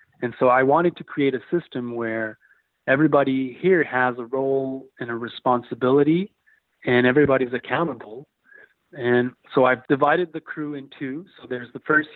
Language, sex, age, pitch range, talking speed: English, male, 30-49, 125-145 Hz, 160 wpm